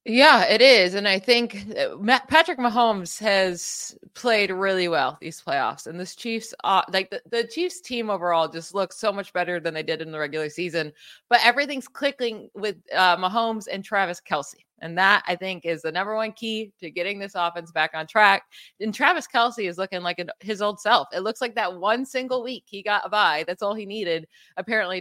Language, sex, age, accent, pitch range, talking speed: English, female, 20-39, American, 175-230 Hz, 205 wpm